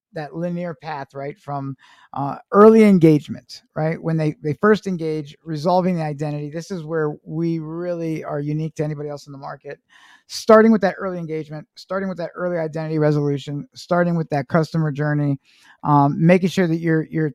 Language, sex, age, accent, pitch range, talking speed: English, male, 50-69, American, 155-190 Hz, 180 wpm